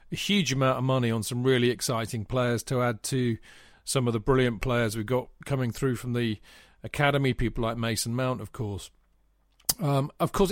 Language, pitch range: English, 115-140 Hz